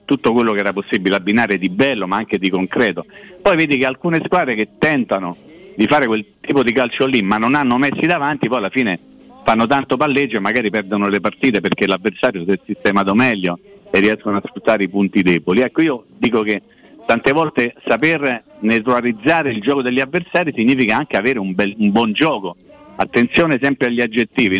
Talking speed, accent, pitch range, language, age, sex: 190 wpm, native, 110-145 Hz, Italian, 50-69, male